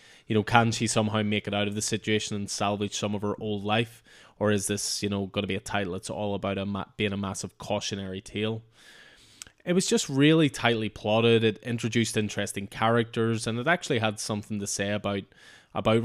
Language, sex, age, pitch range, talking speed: English, male, 20-39, 100-115 Hz, 215 wpm